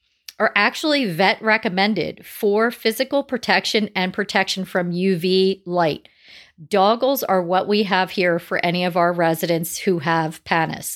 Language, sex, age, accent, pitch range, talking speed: English, female, 40-59, American, 180-230 Hz, 140 wpm